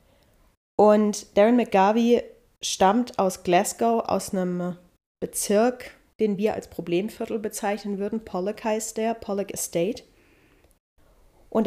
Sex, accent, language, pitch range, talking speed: female, German, German, 190-220 Hz, 110 wpm